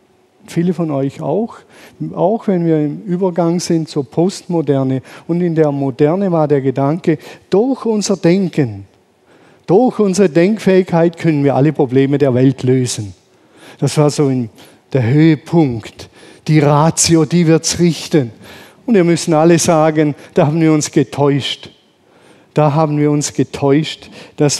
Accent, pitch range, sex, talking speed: German, 130-165 Hz, male, 145 wpm